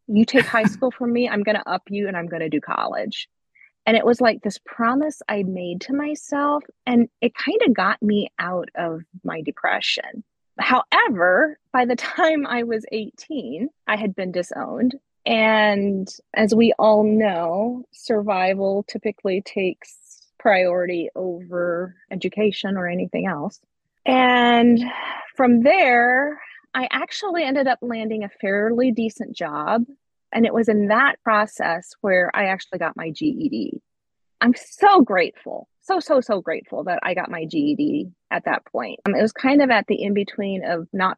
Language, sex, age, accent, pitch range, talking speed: English, female, 30-49, American, 195-255 Hz, 165 wpm